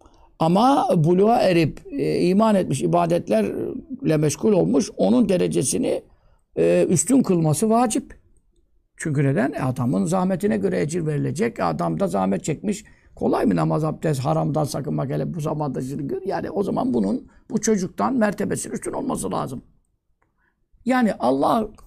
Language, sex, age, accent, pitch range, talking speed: Turkish, male, 60-79, native, 150-220 Hz, 130 wpm